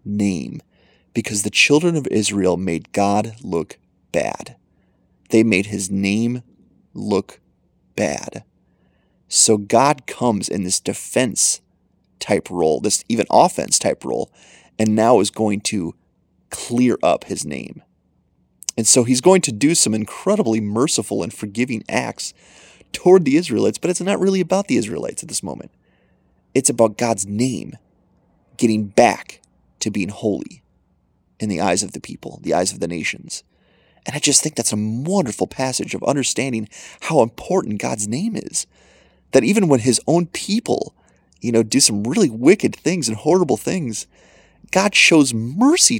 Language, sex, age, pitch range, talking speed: English, male, 30-49, 100-145 Hz, 155 wpm